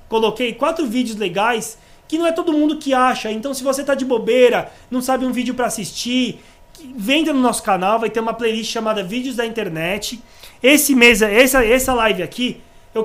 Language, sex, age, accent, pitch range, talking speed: Portuguese, male, 20-39, Brazilian, 200-255 Hz, 195 wpm